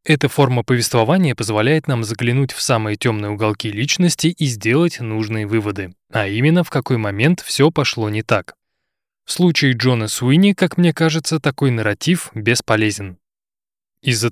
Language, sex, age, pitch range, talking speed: Russian, male, 20-39, 110-145 Hz, 145 wpm